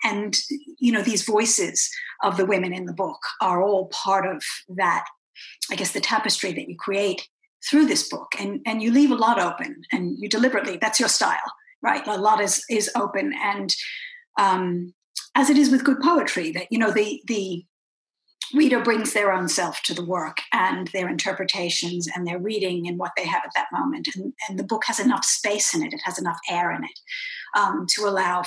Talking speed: 205 wpm